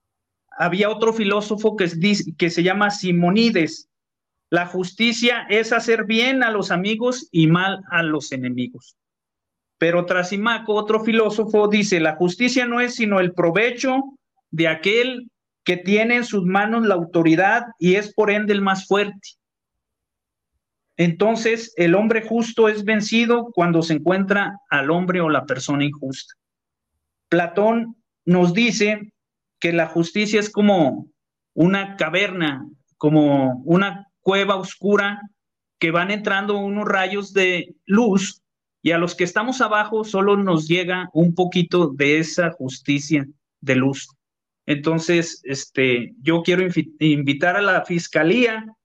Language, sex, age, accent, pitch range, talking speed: Spanish, male, 40-59, Mexican, 165-210 Hz, 135 wpm